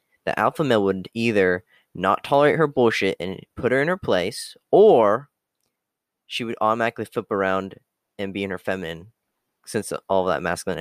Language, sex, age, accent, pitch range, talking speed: English, male, 10-29, American, 100-125 Hz, 170 wpm